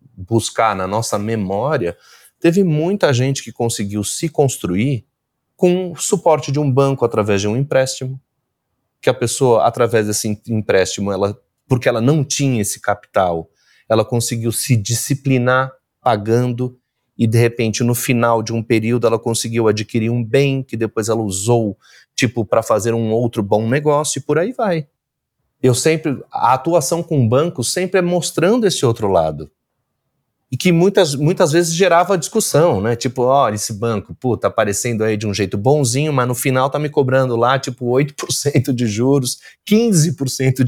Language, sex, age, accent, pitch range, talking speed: Portuguese, male, 30-49, Brazilian, 110-145 Hz, 165 wpm